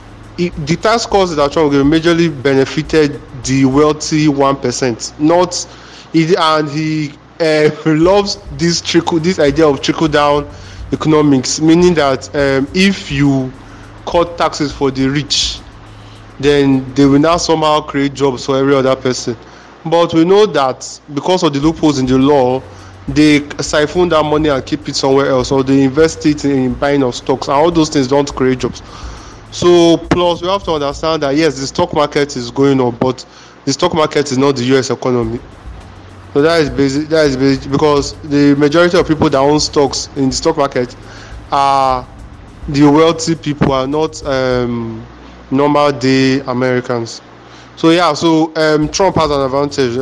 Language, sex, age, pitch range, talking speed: English, male, 20-39, 130-155 Hz, 170 wpm